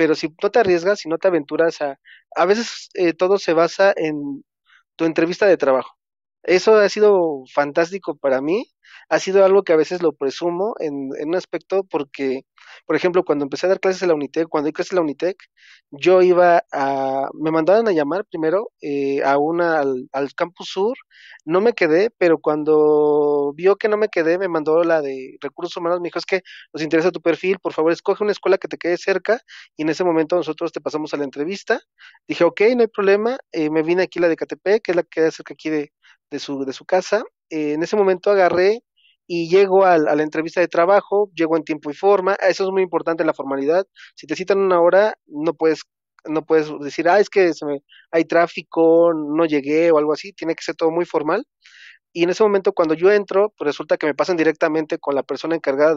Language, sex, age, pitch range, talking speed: Spanish, male, 30-49, 155-190 Hz, 220 wpm